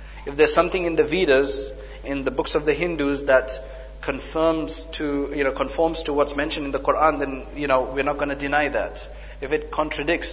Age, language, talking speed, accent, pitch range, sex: 30-49, English, 210 wpm, South African, 135-165 Hz, male